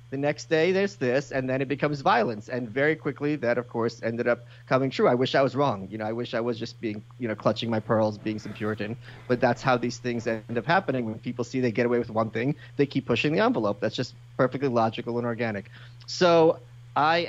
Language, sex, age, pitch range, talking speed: English, male, 30-49, 120-140 Hz, 245 wpm